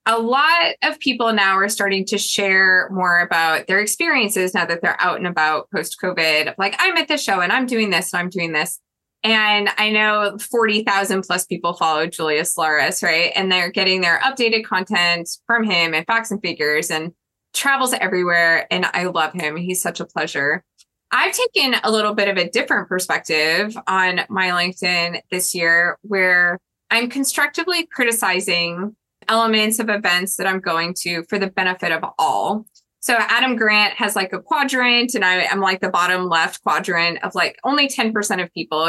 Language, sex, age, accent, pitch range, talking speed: English, female, 20-39, American, 180-230 Hz, 180 wpm